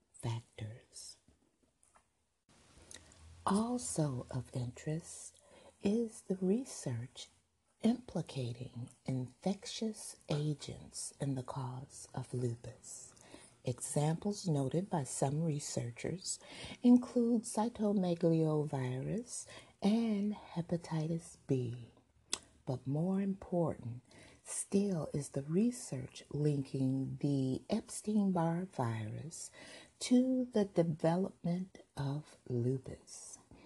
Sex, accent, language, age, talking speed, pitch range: female, American, English, 50-69, 75 wpm, 130-195 Hz